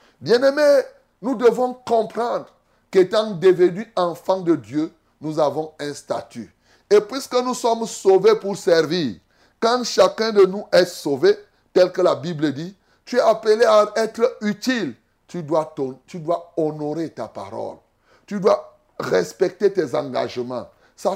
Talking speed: 140 wpm